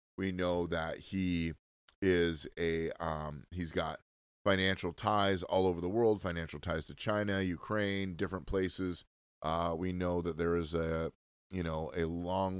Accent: American